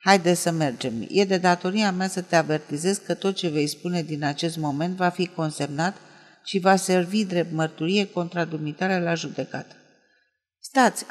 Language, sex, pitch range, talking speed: Romanian, female, 160-200 Hz, 160 wpm